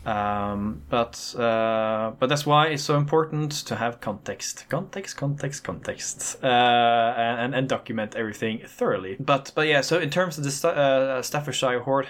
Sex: male